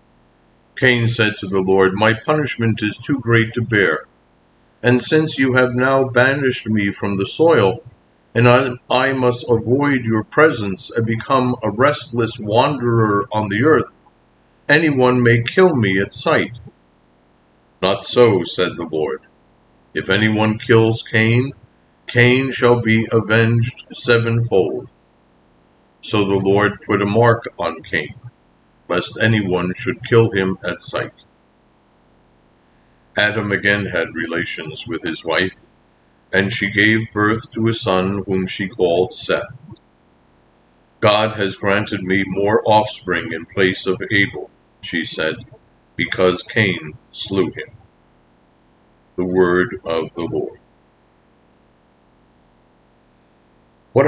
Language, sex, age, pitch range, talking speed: English, male, 50-69, 100-125 Hz, 125 wpm